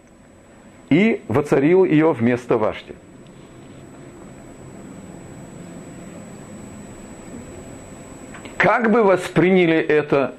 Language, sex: Russian, male